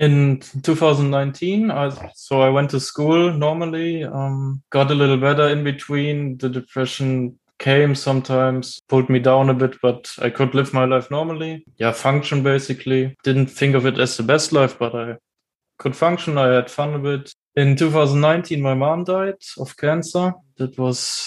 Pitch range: 135-155 Hz